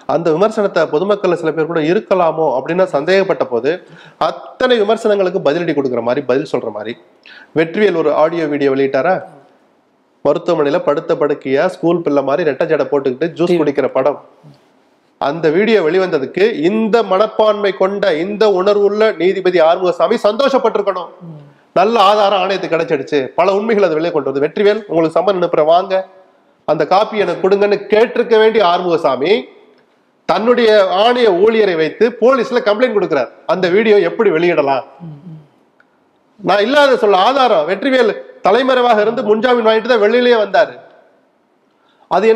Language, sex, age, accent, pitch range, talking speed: Tamil, male, 30-49, native, 165-220 Hz, 80 wpm